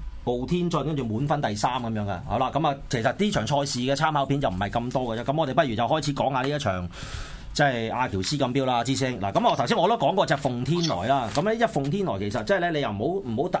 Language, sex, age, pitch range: Chinese, male, 30-49, 115-150 Hz